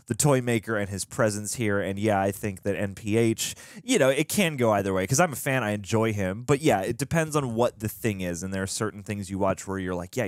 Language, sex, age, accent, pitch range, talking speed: English, male, 20-39, American, 95-115 Hz, 275 wpm